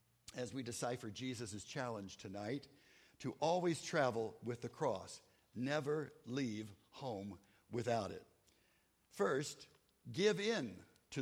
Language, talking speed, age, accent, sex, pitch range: English, 110 wpm, 60-79, American, male, 115-155 Hz